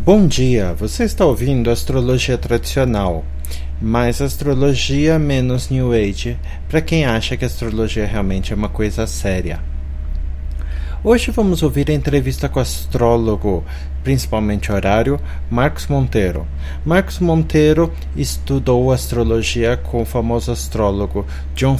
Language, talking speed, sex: English, 120 wpm, male